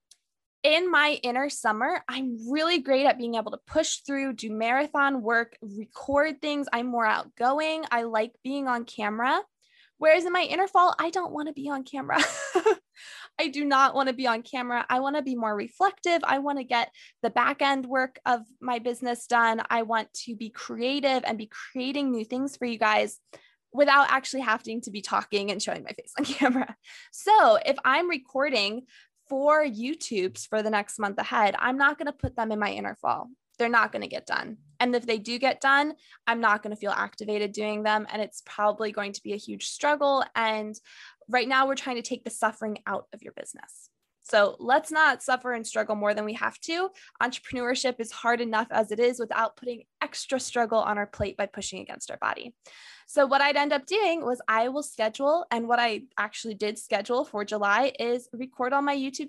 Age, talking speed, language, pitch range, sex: 20-39, 205 wpm, English, 225-285 Hz, female